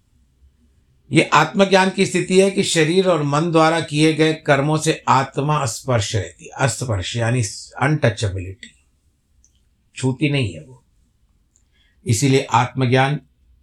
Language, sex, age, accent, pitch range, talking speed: Hindi, male, 60-79, native, 85-135 Hz, 125 wpm